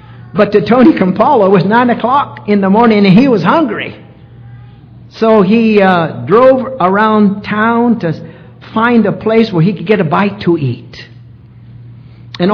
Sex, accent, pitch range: male, American, 130-210 Hz